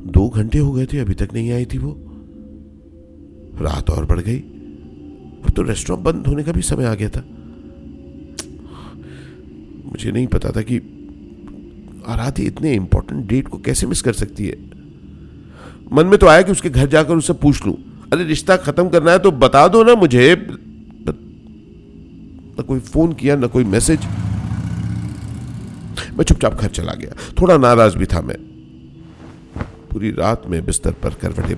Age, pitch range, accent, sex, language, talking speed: 50-69, 85-130 Hz, native, male, Hindi, 160 wpm